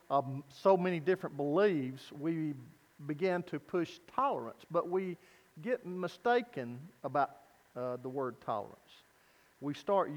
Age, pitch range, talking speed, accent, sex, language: 50-69, 140-185 Hz, 125 wpm, American, male, English